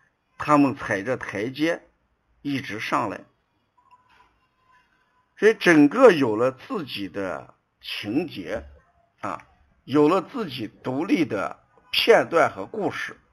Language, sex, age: Chinese, male, 60-79